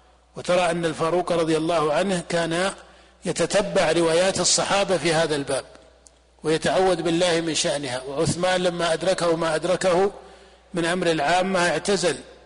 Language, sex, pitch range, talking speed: Arabic, male, 155-185 Hz, 125 wpm